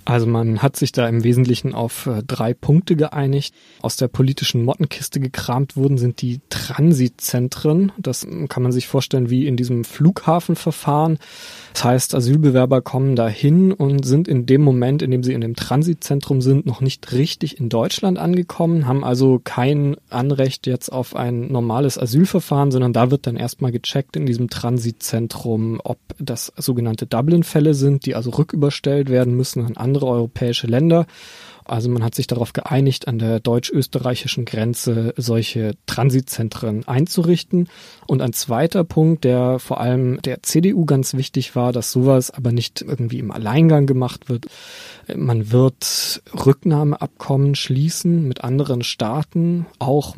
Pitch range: 120-145 Hz